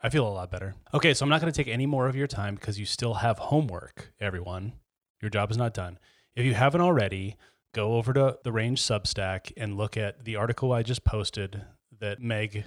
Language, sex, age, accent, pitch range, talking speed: English, male, 30-49, American, 100-130 Hz, 225 wpm